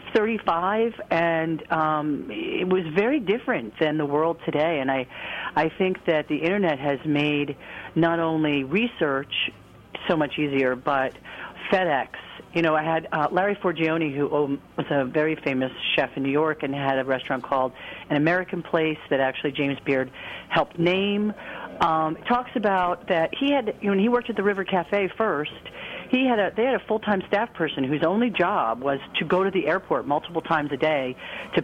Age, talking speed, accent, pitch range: 50-69, 185 wpm, American, 145-195 Hz